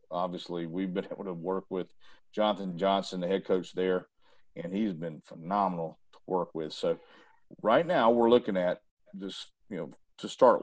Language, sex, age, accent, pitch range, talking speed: English, male, 50-69, American, 90-105 Hz, 175 wpm